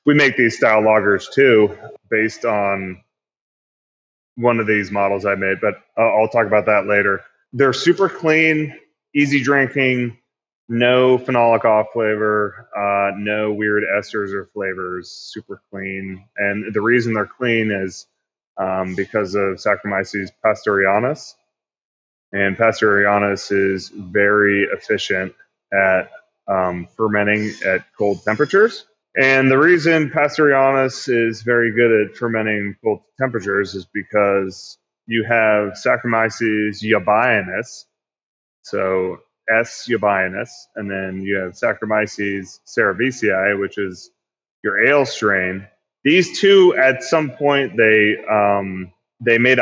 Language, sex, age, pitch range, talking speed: English, male, 20-39, 100-120 Hz, 120 wpm